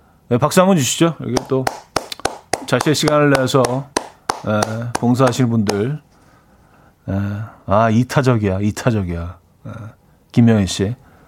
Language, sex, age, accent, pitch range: Korean, male, 40-59, native, 115-160 Hz